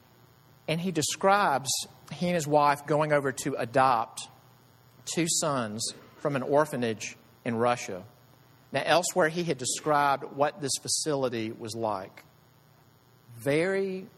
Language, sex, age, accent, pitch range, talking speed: English, male, 40-59, American, 125-155 Hz, 125 wpm